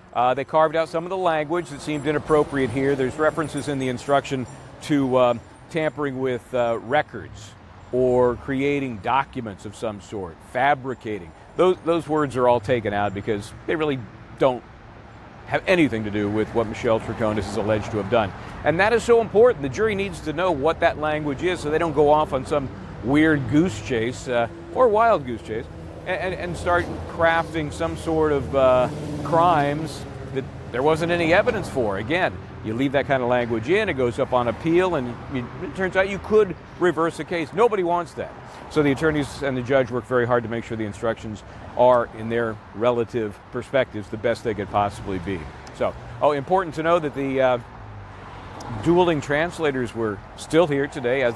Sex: male